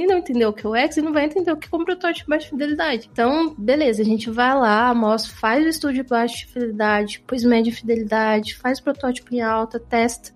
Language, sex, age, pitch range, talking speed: Portuguese, female, 20-39, 215-275 Hz, 250 wpm